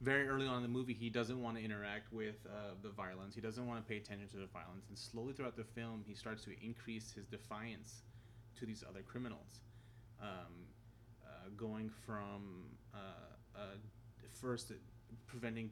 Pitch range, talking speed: 100-115 Hz, 180 wpm